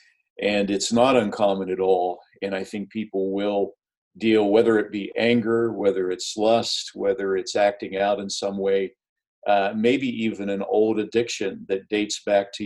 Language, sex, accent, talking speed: English, male, American, 170 wpm